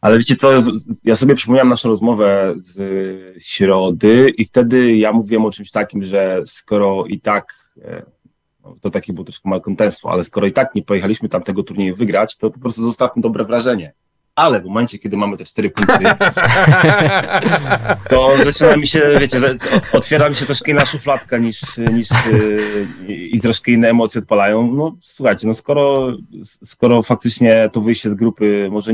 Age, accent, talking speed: 30-49, native, 170 wpm